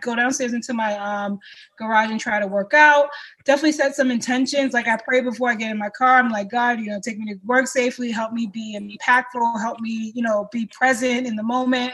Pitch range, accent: 215-250 Hz, American